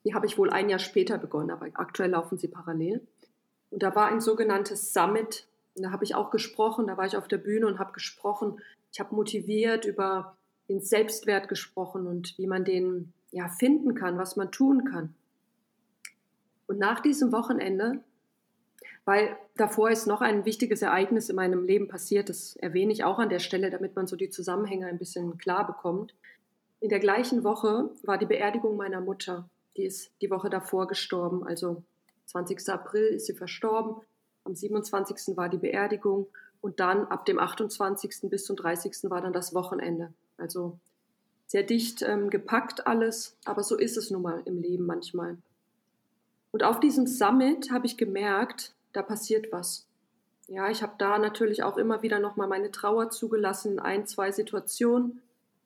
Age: 30-49